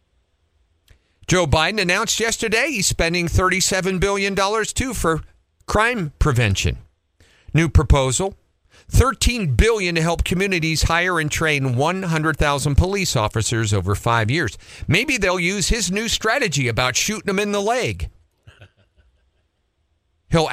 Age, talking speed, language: 50-69, 120 wpm, English